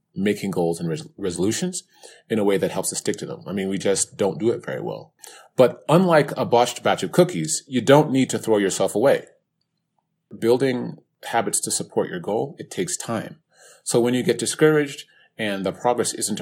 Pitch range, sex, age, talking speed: 100-160 Hz, male, 30-49, 195 wpm